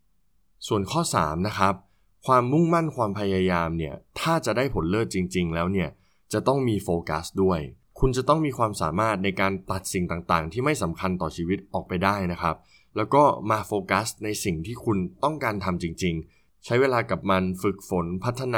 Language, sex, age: Thai, male, 20-39